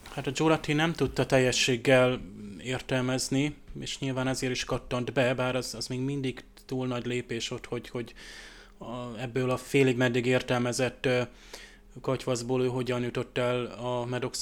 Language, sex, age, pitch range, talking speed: Hungarian, male, 20-39, 120-130 Hz, 145 wpm